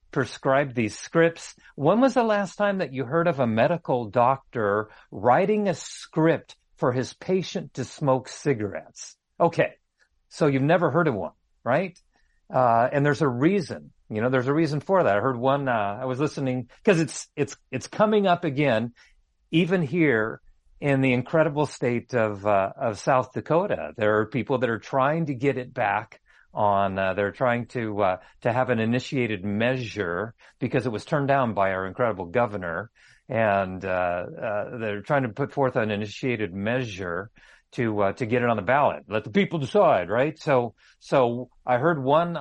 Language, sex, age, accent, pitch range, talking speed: English, male, 50-69, American, 105-155 Hz, 180 wpm